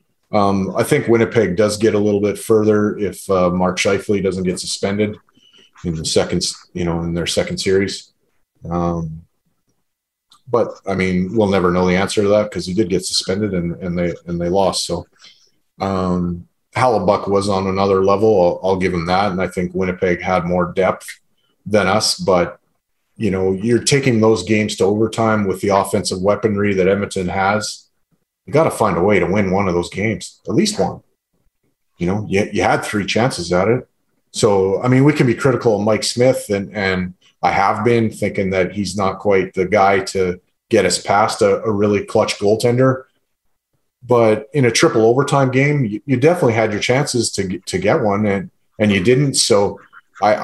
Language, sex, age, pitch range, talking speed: English, male, 30-49, 95-110 Hz, 195 wpm